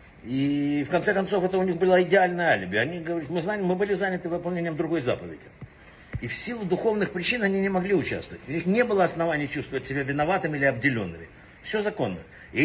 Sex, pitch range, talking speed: male, 140-185 Hz, 200 wpm